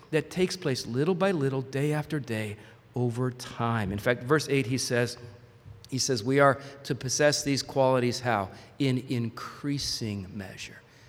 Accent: American